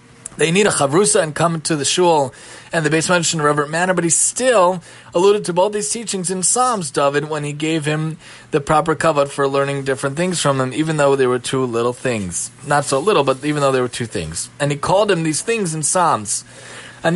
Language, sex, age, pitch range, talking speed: English, male, 20-39, 145-185 Hz, 235 wpm